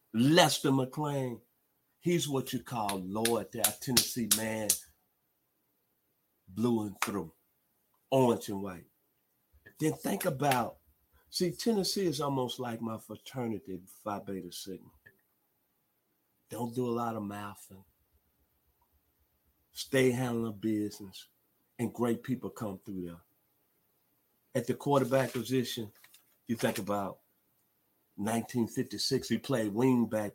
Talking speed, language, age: 110 wpm, English, 50-69